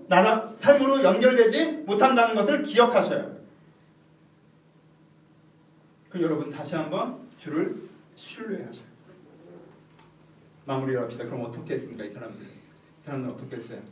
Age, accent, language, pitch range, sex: 40-59, native, Korean, 125-165 Hz, male